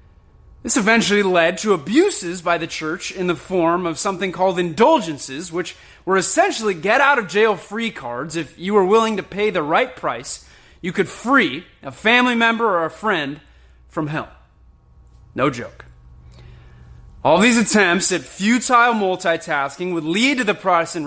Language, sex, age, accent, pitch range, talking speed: English, male, 30-49, American, 150-230 Hz, 150 wpm